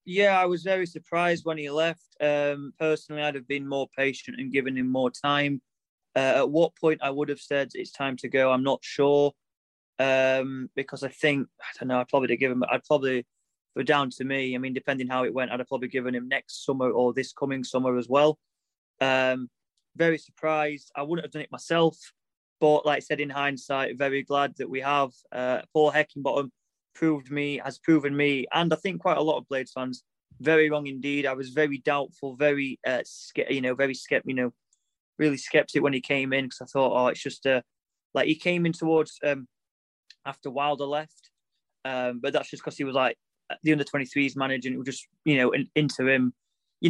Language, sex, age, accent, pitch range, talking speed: English, male, 20-39, British, 130-150 Hz, 210 wpm